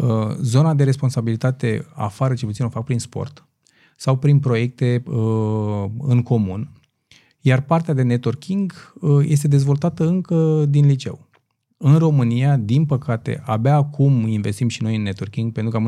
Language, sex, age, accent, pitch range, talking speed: Romanian, male, 20-39, native, 110-140 Hz, 145 wpm